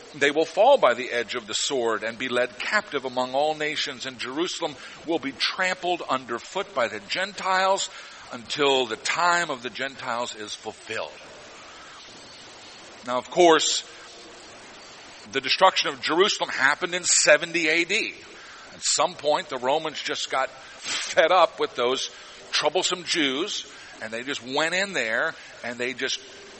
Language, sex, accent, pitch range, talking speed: English, male, American, 145-195 Hz, 150 wpm